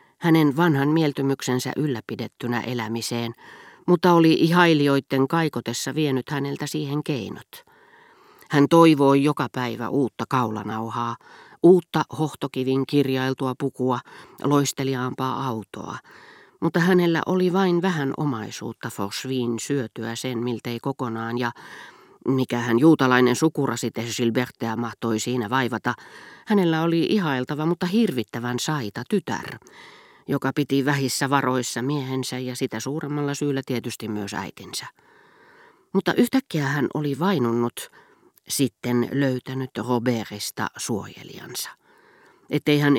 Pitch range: 125-160 Hz